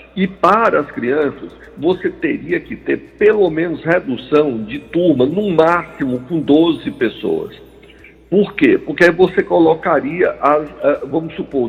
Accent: Brazilian